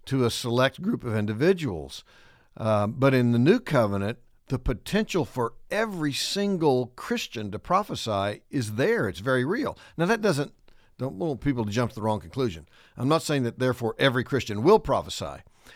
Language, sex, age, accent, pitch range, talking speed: English, male, 60-79, American, 115-140 Hz, 175 wpm